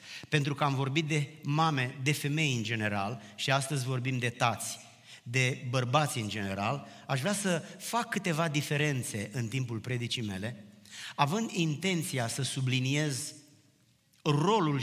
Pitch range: 120-155 Hz